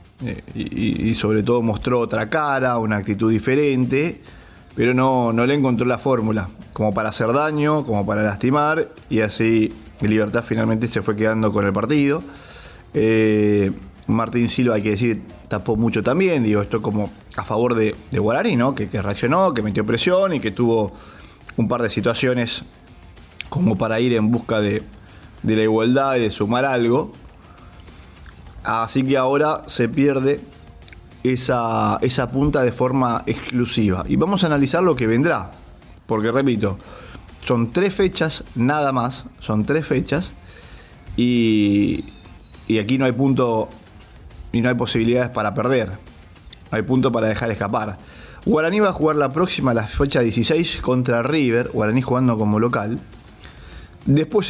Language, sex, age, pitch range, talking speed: English, male, 20-39, 105-130 Hz, 150 wpm